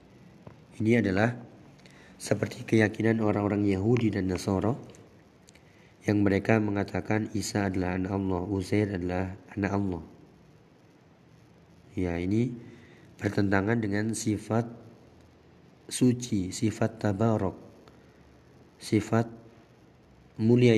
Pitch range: 95-115 Hz